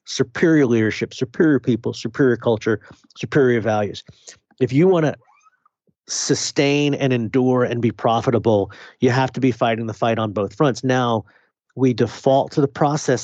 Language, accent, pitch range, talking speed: English, American, 110-130 Hz, 155 wpm